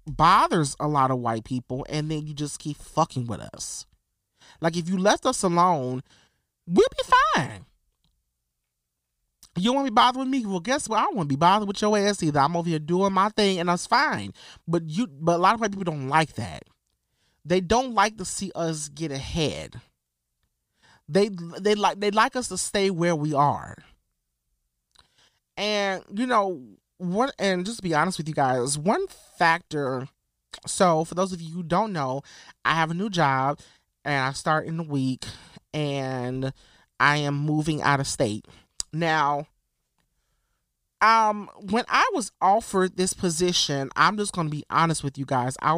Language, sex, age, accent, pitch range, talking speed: English, male, 30-49, American, 135-195 Hz, 180 wpm